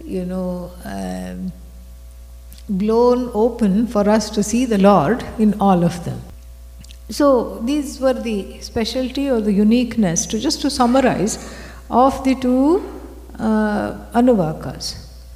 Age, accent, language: 60-79, Indian, English